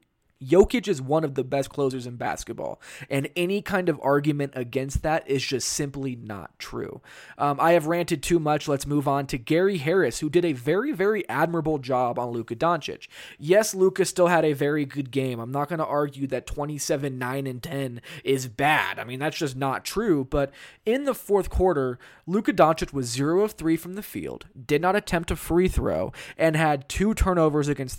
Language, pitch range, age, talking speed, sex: English, 135-170 Hz, 20-39, 200 wpm, male